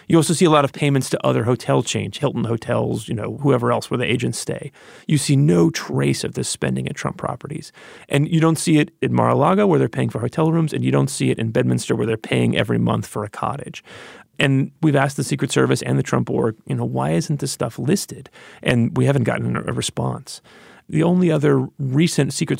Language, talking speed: English, 230 wpm